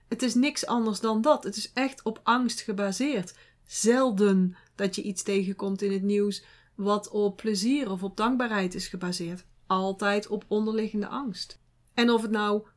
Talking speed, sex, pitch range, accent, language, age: 170 wpm, female, 200-245 Hz, Dutch, Dutch, 40-59